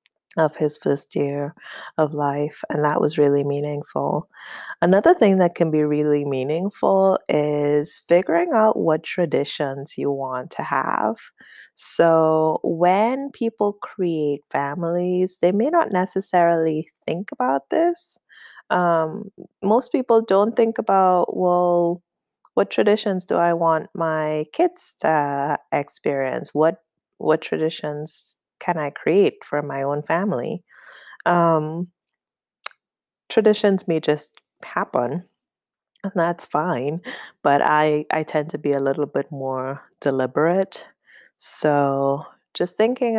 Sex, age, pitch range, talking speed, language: female, 20-39, 145-180 Hz, 120 wpm, English